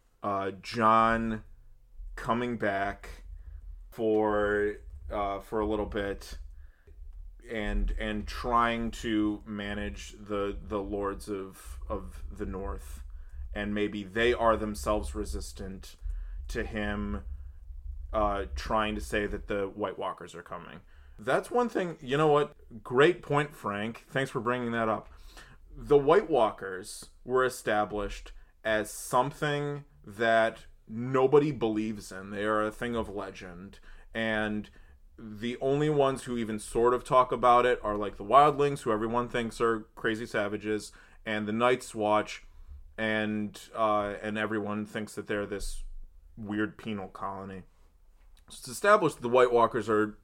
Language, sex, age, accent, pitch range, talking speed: English, male, 20-39, American, 95-120 Hz, 135 wpm